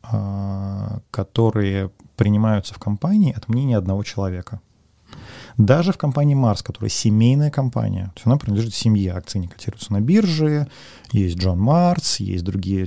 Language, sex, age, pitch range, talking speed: Russian, male, 30-49, 100-120 Hz, 135 wpm